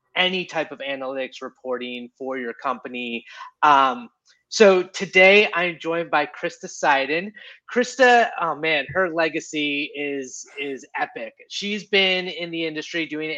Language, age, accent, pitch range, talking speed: English, 30-49, American, 135-170 Hz, 135 wpm